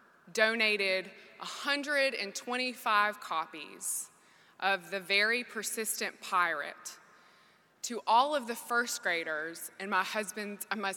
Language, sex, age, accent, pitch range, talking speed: English, female, 20-39, American, 185-235 Hz, 100 wpm